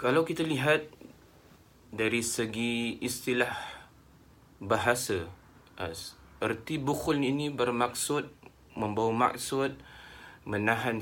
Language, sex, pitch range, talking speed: Malay, male, 105-130 Hz, 75 wpm